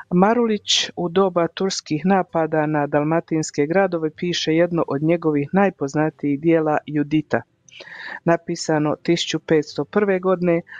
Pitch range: 150-175 Hz